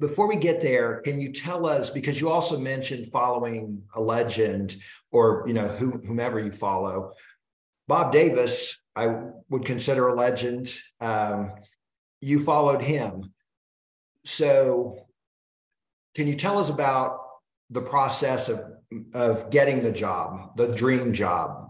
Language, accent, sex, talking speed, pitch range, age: English, American, male, 135 wpm, 105-130 Hz, 40-59